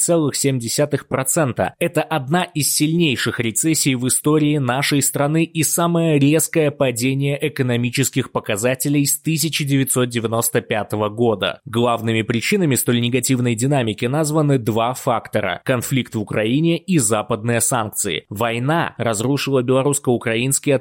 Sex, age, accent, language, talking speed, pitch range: male, 20-39, native, Russian, 105 wpm, 115-140 Hz